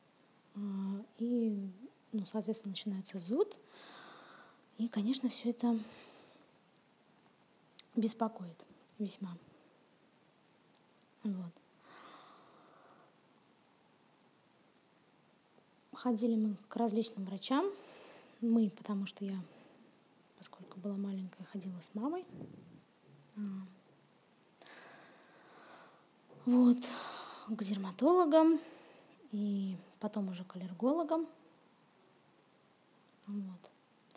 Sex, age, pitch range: female, 20-39, 195-235 Hz